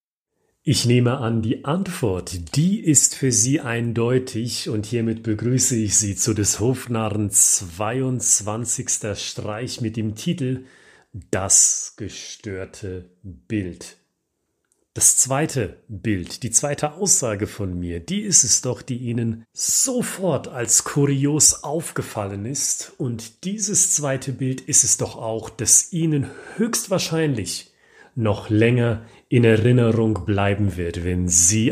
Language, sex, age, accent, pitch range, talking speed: German, male, 40-59, German, 105-135 Hz, 120 wpm